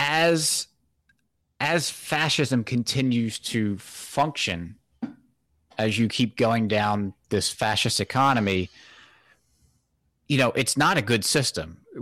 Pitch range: 95-125 Hz